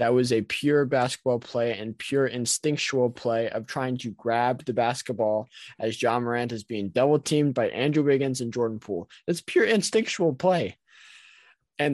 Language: English